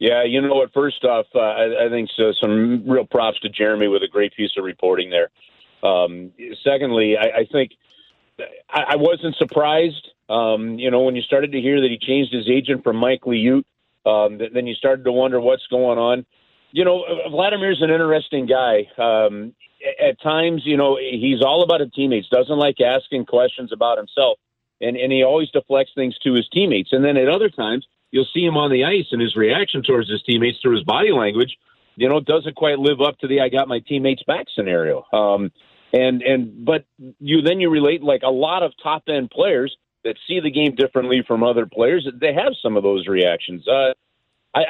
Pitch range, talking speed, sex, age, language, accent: 120-150 Hz, 210 wpm, male, 40-59, English, American